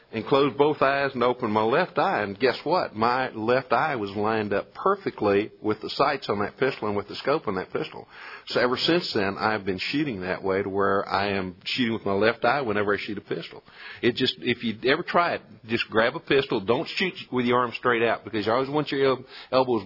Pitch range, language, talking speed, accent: 105-130 Hz, English, 235 wpm, American